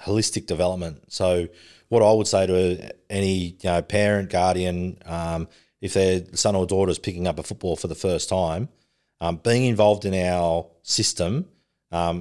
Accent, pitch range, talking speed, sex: Australian, 85-100 Hz, 170 wpm, male